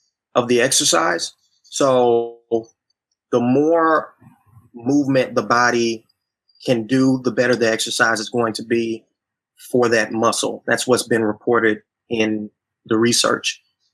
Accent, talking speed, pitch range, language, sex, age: American, 125 wpm, 115-130 Hz, English, male, 20-39